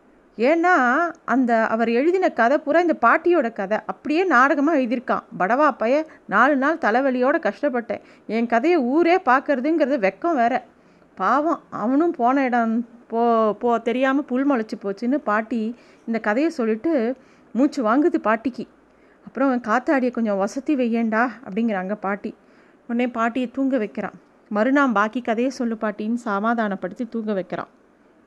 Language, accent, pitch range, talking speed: Tamil, native, 210-280 Hz, 145 wpm